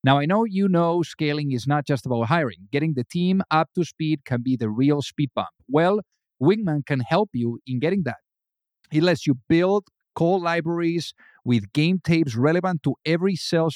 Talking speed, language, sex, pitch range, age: 190 wpm, English, male, 140-180 Hz, 50-69